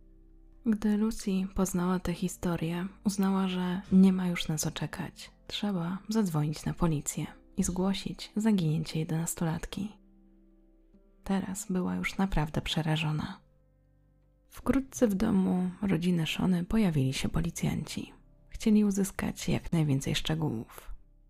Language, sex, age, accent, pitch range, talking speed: Polish, female, 20-39, native, 160-200 Hz, 110 wpm